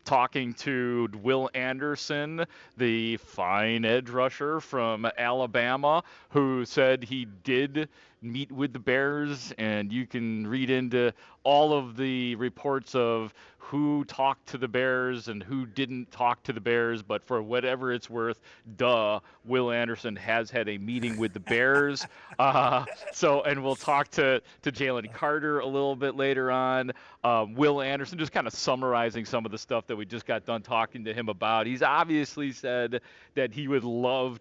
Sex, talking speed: male, 165 wpm